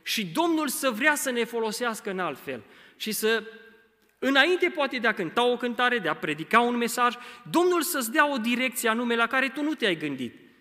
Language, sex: Romanian, male